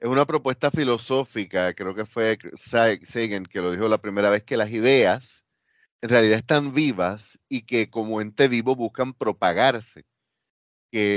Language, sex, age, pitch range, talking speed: Spanish, male, 30-49, 110-140 Hz, 155 wpm